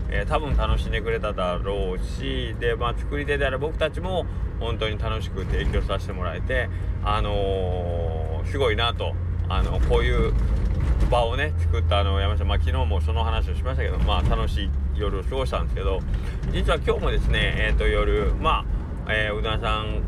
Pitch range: 75-110 Hz